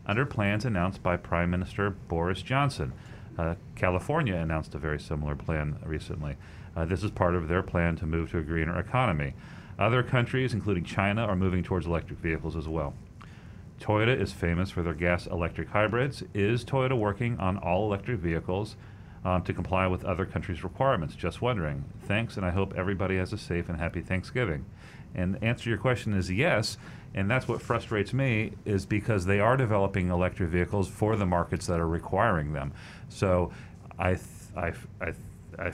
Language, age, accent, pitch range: English, 40-59, American, 85-105 Hz